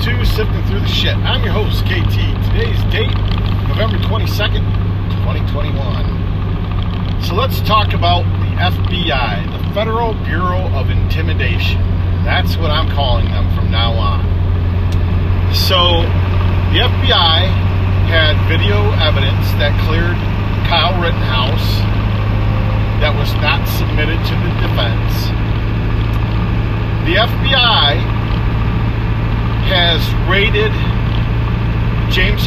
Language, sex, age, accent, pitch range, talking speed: English, male, 40-59, American, 95-110 Hz, 100 wpm